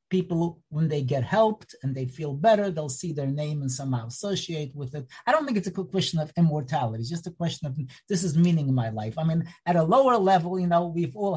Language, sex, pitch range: English, male, 145-185 Hz